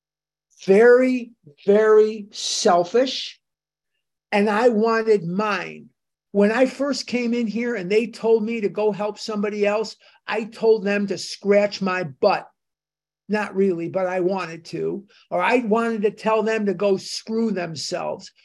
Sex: male